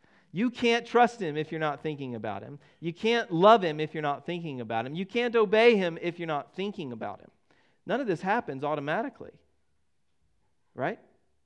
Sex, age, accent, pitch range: male, 40-59, American, 110-160 Hz